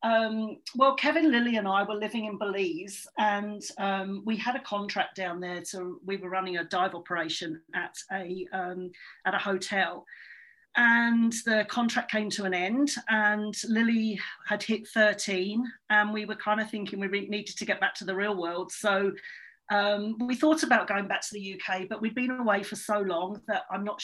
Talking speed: 195 wpm